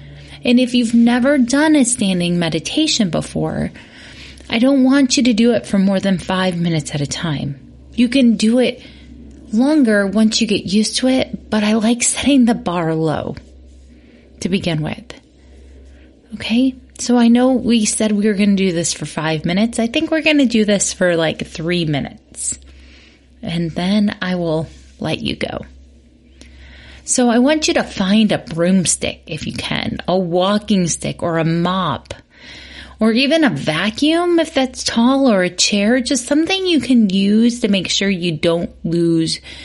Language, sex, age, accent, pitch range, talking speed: English, female, 30-49, American, 155-240 Hz, 175 wpm